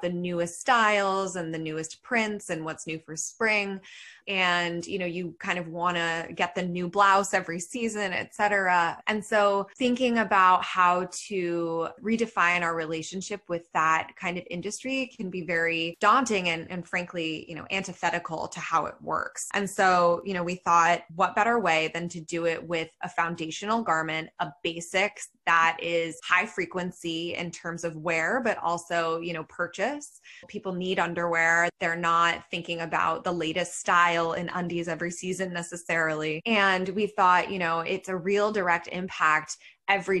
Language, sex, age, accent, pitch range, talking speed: English, female, 20-39, American, 165-195 Hz, 170 wpm